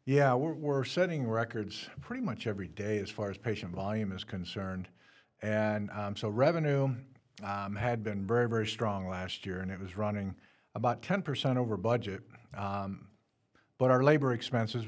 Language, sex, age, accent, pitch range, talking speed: English, male, 50-69, American, 105-125 Hz, 165 wpm